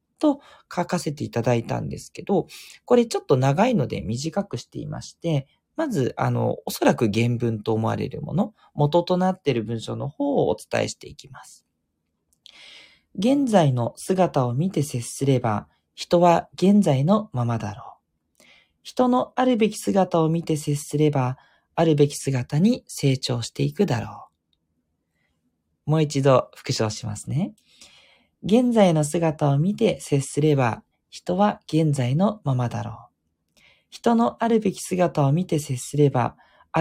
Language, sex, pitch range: Japanese, male, 120-190 Hz